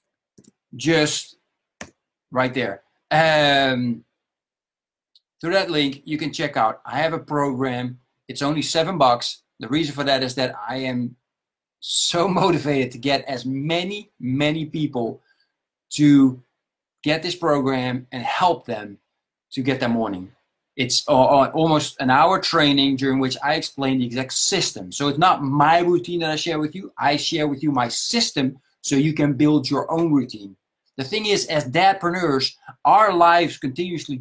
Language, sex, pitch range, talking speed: English, male, 125-160 Hz, 160 wpm